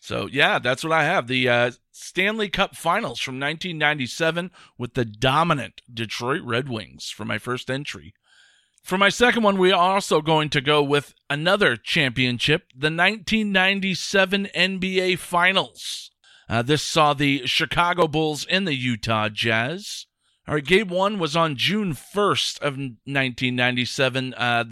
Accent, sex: American, male